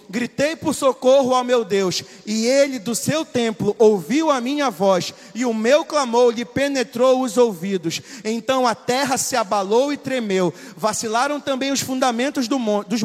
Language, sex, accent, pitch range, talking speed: Portuguese, male, Brazilian, 225-280 Hz, 165 wpm